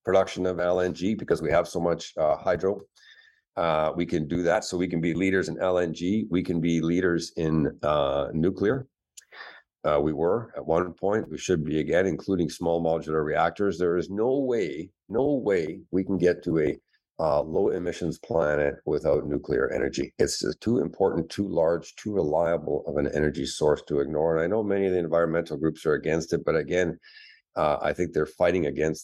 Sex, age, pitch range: male, 50-69, 80-100 Hz